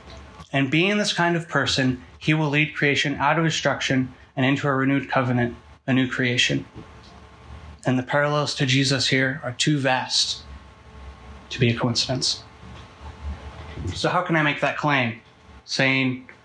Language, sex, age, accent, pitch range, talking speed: English, male, 30-49, American, 120-140 Hz, 155 wpm